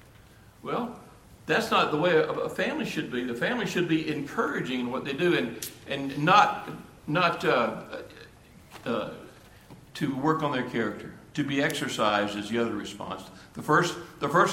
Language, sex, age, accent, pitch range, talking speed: English, male, 60-79, American, 125-165 Hz, 160 wpm